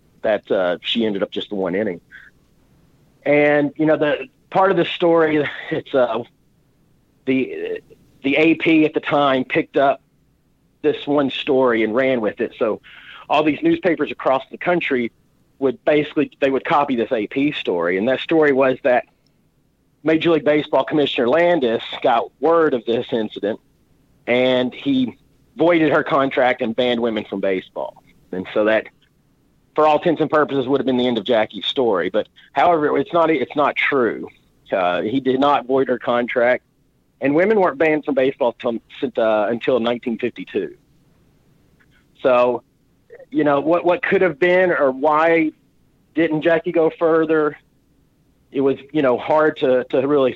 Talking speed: 160 wpm